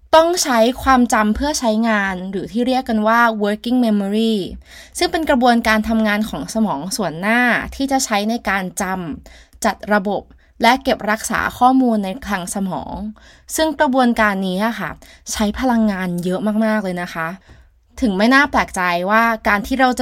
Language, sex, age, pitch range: Thai, female, 20-39, 200-255 Hz